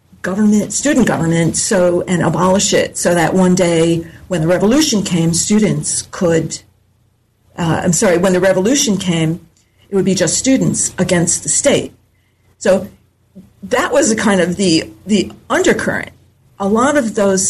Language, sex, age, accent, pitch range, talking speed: English, female, 50-69, American, 155-190 Hz, 155 wpm